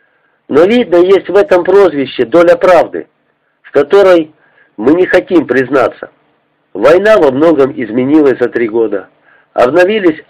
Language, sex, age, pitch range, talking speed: Russian, male, 50-69, 130-185 Hz, 130 wpm